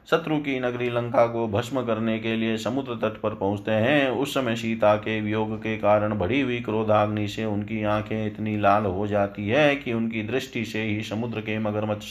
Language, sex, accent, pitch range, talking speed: Hindi, male, native, 105-120 Hz, 200 wpm